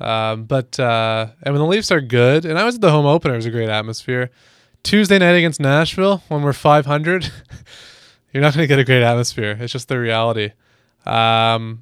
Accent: American